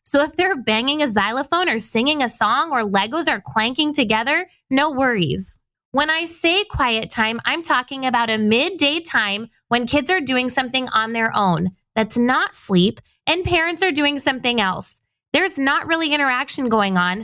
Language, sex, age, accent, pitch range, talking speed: English, female, 20-39, American, 225-305 Hz, 180 wpm